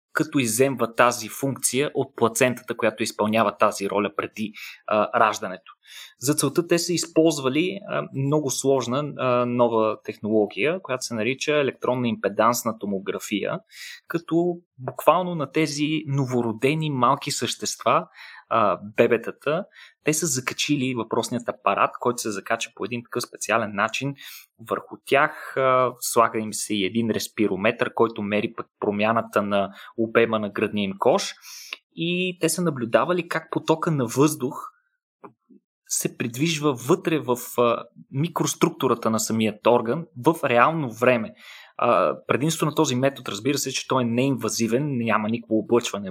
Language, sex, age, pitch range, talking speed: Bulgarian, male, 20-39, 115-150 Hz, 130 wpm